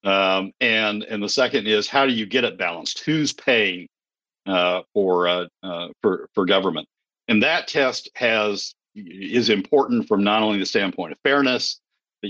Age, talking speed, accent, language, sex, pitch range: 50-69, 170 wpm, American, English, male, 95-130 Hz